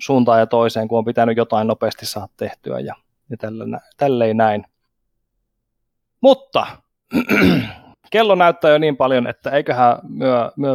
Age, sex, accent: 30-49, male, native